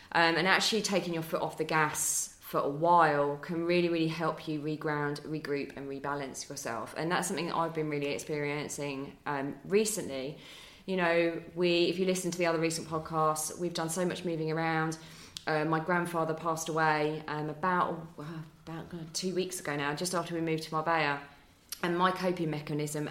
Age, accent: 20-39, British